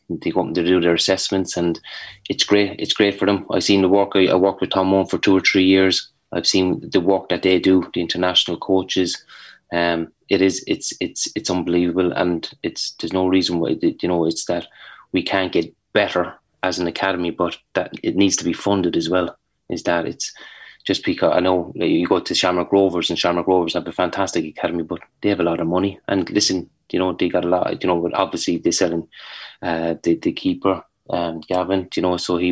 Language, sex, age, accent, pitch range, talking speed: English, male, 20-39, Irish, 85-95 Hz, 220 wpm